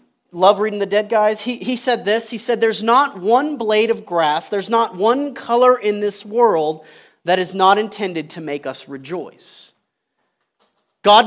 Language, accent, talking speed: English, American, 175 wpm